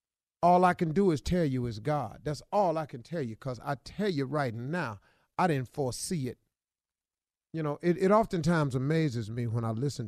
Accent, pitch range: American, 120-170 Hz